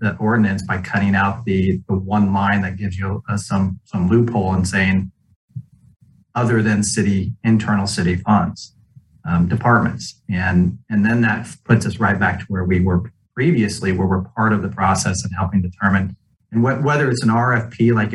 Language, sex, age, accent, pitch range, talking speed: English, male, 30-49, American, 95-110 Hz, 180 wpm